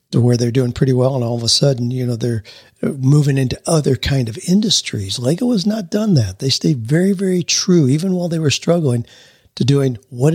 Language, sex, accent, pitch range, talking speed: English, male, American, 120-155 Hz, 220 wpm